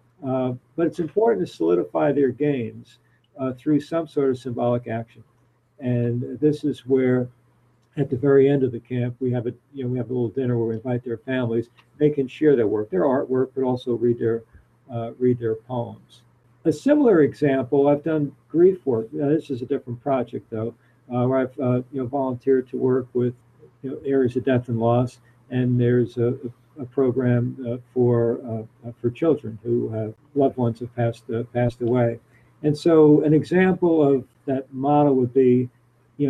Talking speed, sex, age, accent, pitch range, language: 195 wpm, male, 50-69, American, 120-140 Hz, English